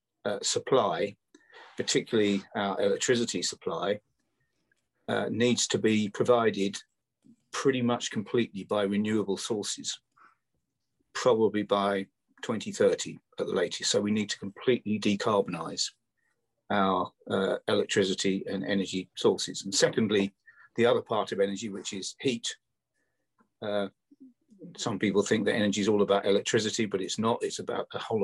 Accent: British